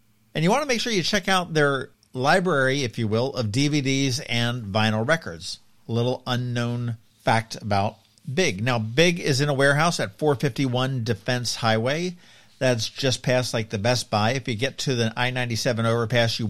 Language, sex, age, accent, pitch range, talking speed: English, male, 50-69, American, 110-150 Hz, 180 wpm